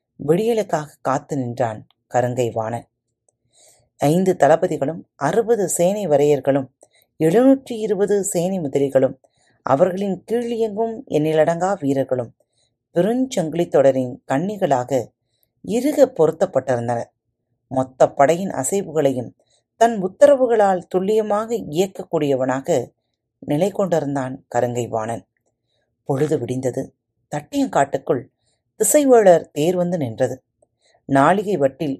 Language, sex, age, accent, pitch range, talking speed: Tamil, female, 30-49, native, 125-185 Hz, 80 wpm